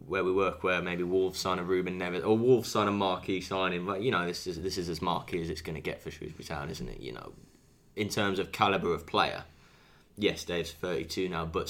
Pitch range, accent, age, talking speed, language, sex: 85-100 Hz, British, 10-29, 245 wpm, English, male